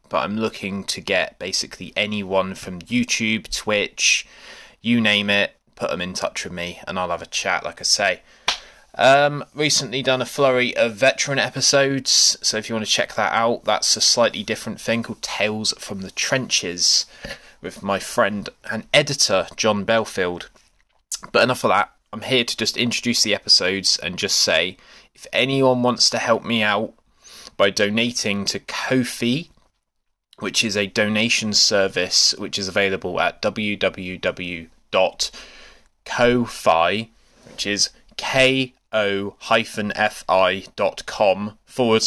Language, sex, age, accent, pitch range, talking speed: English, male, 20-39, British, 100-120 Hz, 145 wpm